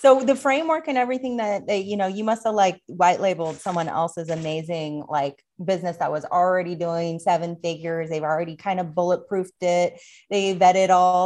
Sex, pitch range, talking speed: female, 165-200 Hz, 180 wpm